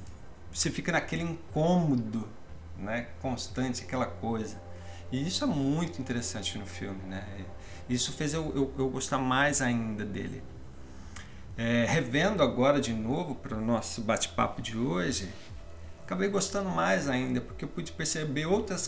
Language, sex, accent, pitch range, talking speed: Portuguese, male, Brazilian, 100-135 Hz, 145 wpm